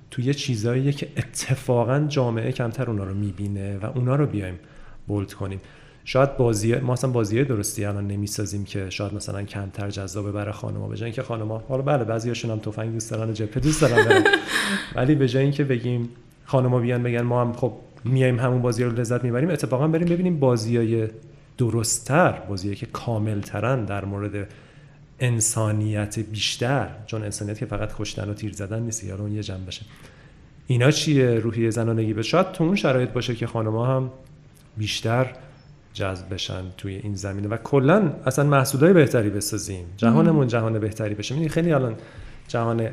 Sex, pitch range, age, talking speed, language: male, 110-135 Hz, 40-59, 165 wpm, Persian